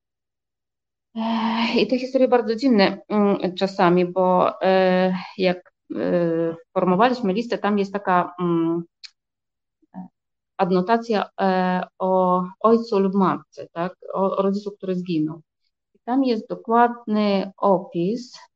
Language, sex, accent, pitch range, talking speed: Polish, female, native, 175-205 Hz, 90 wpm